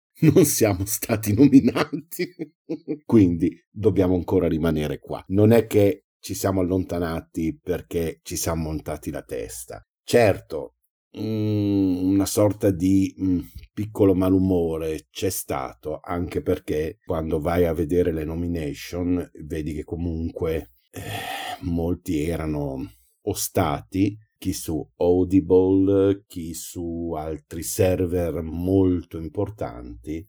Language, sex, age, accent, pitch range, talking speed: Italian, male, 50-69, native, 85-100 Hz, 105 wpm